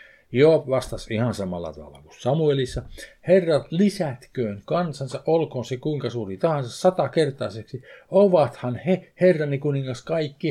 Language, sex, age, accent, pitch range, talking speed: Finnish, male, 50-69, native, 110-160 Hz, 120 wpm